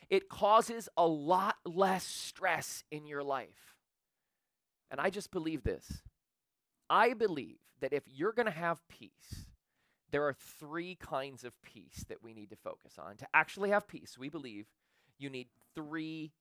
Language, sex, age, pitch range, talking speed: English, male, 30-49, 135-200 Hz, 160 wpm